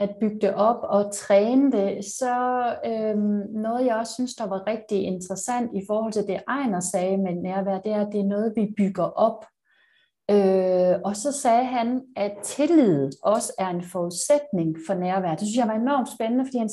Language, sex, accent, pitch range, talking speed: Danish, female, native, 195-235 Hz, 195 wpm